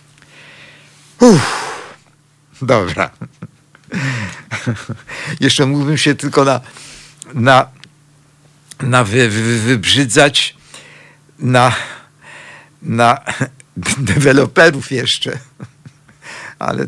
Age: 60-79